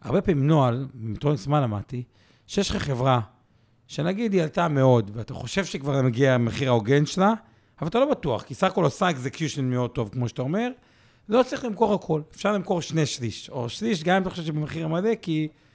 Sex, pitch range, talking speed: male, 125-180 Hz, 190 wpm